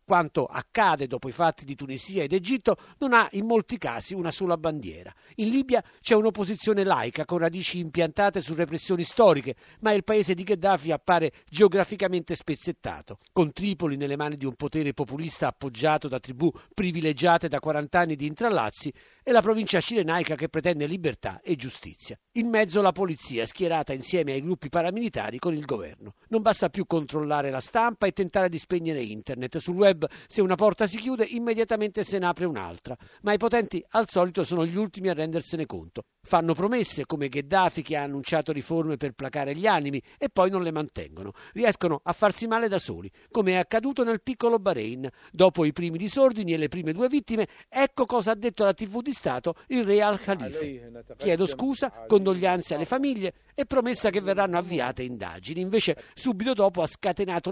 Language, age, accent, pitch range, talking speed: Italian, 50-69, native, 150-210 Hz, 180 wpm